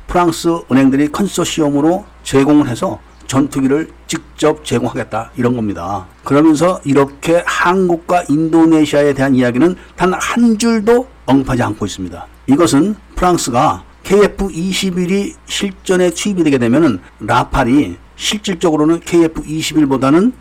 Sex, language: male, Korean